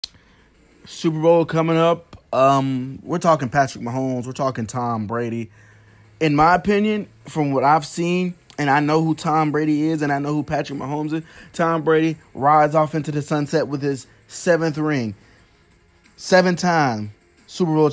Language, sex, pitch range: English, male, 125-160 Hz